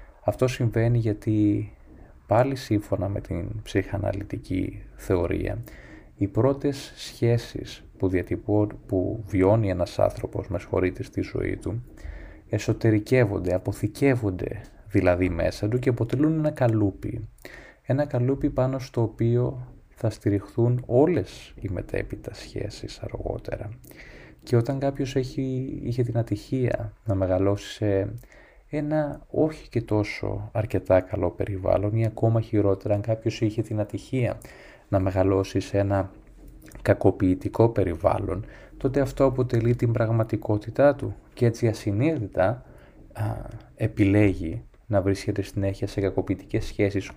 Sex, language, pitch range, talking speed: male, Greek, 100-120 Hz, 115 wpm